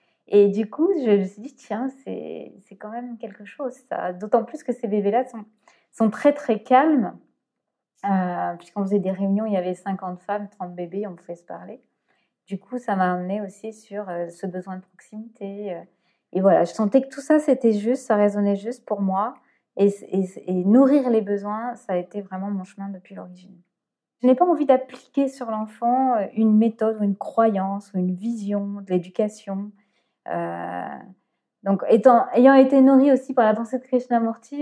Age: 20-39